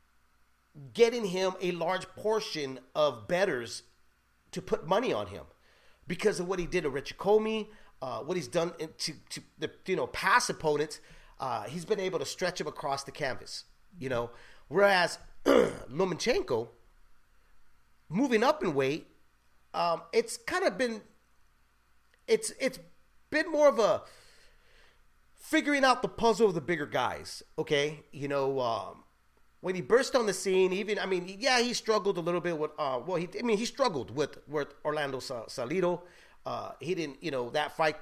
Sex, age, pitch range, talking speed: male, 30-49, 140-210 Hz, 165 wpm